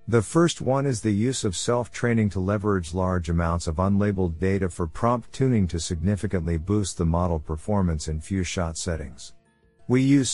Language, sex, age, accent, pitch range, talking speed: English, male, 50-69, American, 90-115 Hz, 175 wpm